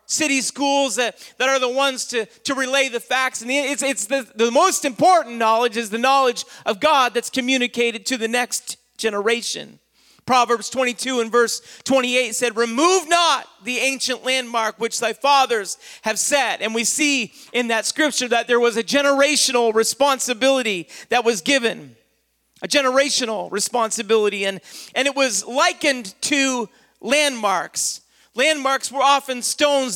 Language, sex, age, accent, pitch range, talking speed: English, male, 40-59, American, 235-275 Hz, 150 wpm